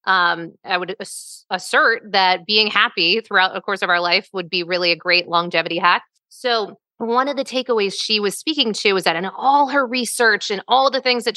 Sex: female